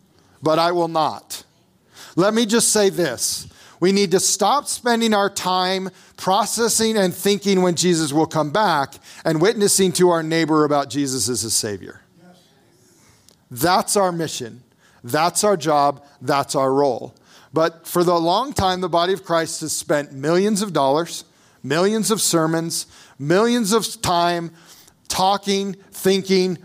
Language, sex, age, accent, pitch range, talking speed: English, male, 40-59, American, 160-205 Hz, 145 wpm